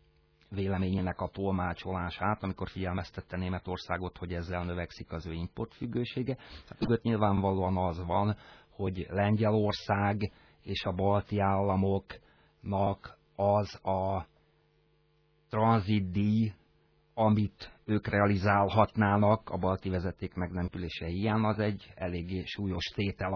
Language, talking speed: Hungarian, 100 wpm